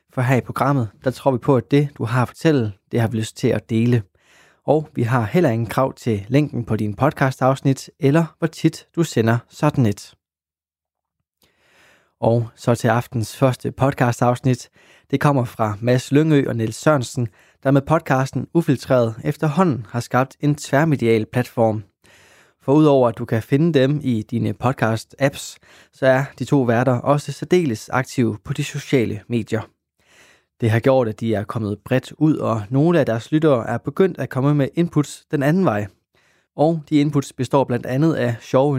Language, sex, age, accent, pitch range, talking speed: Danish, male, 20-39, native, 115-145 Hz, 185 wpm